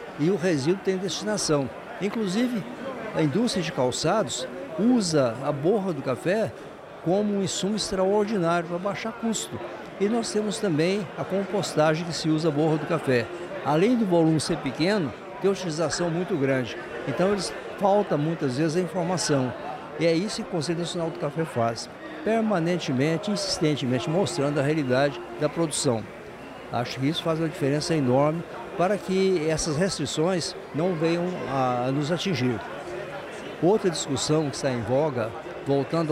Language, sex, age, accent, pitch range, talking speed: Portuguese, male, 60-79, Brazilian, 140-190 Hz, 150 wpm